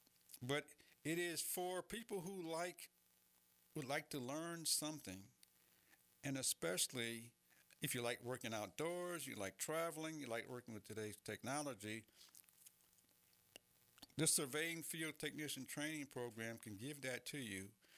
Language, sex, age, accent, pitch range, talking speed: English, male, 60-79, American, 105-150 Hz, 130 wpm